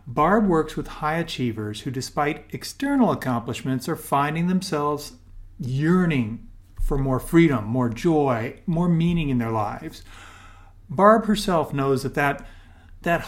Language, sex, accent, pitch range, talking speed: English, male, American, 120-170 Hz, 130 wpm